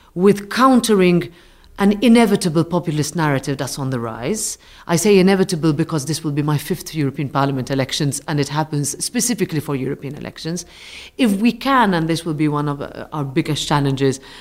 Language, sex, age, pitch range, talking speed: English, female, 40-59, 150-200 Hz, 170 wpm